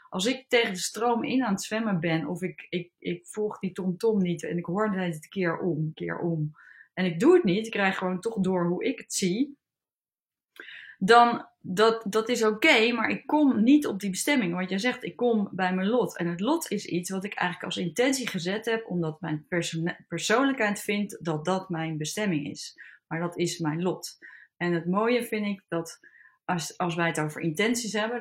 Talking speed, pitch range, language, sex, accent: 215 wpm, 175-225 Hz, Dutch, female, Dutch